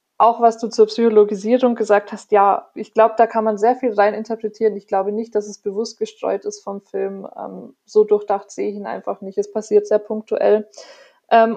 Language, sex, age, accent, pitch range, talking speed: German, female, 20-39, German, 200-225 Hz, 210 wpm